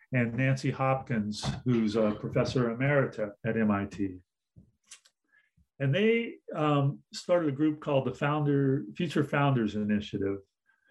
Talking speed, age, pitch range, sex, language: 115 wpm, 40-59, 120-155 Hz, male, English